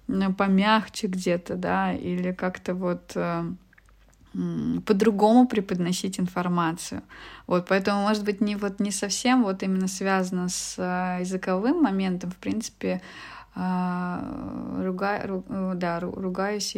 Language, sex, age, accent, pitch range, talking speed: Russian, female, 20-39, native, 175-205 Hz, 95 wpm